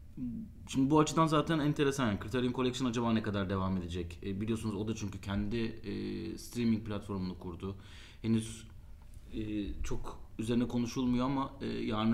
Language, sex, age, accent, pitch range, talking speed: Turkish, male, 30-49, native, 100-125 Hz, 150 wpm